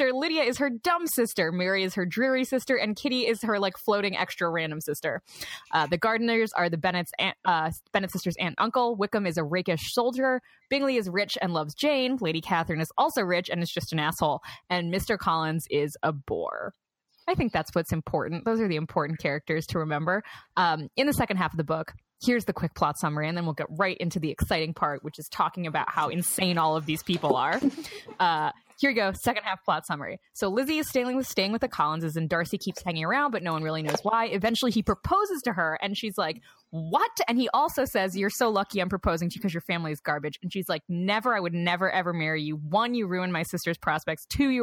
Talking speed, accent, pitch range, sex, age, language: 235 wpm, American, 160-225 Hz, female, 20-39, English